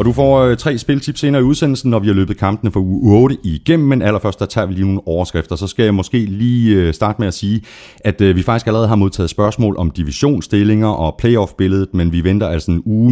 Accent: native